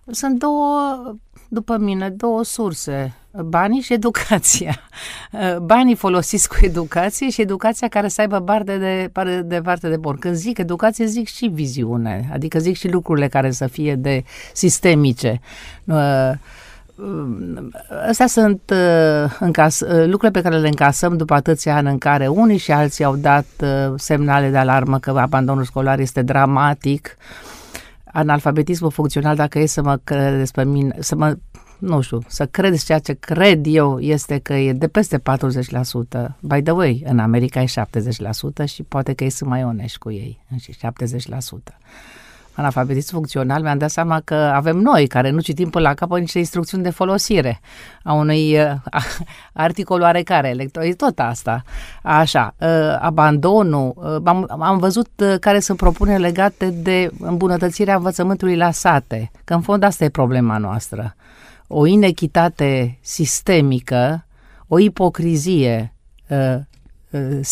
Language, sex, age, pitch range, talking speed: Romanian, female, 50-69, 135-185 Hz, 145 wpm